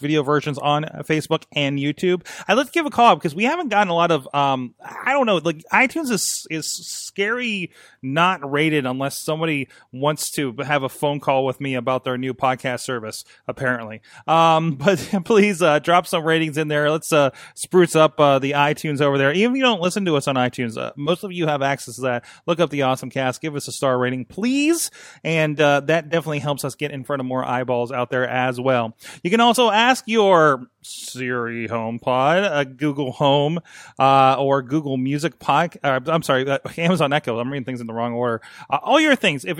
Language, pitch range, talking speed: English, 130-165 Hz, 215 wpm